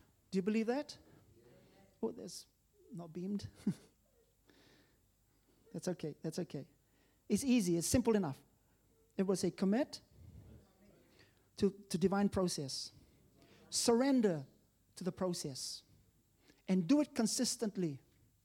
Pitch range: 160-215 Hz